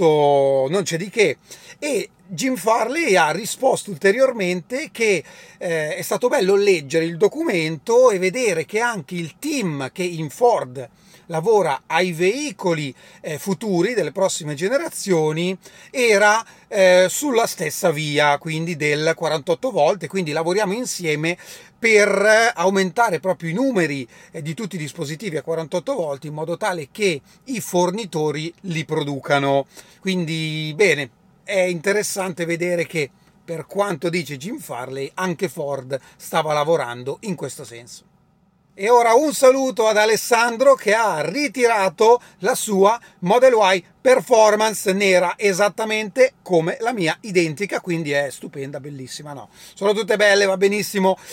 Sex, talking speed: male, 135 wpm